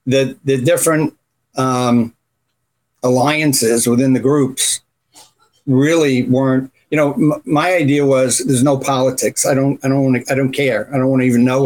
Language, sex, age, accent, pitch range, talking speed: English, male, 60-79, American, 125-145 Hz, 170 wpm